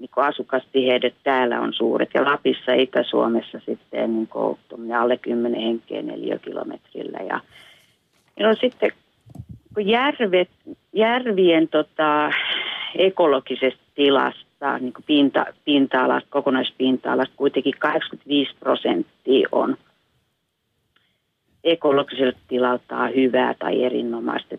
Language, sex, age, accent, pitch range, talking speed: Finnish, female, 40-59, native, 125-175 Hz, 95 wpm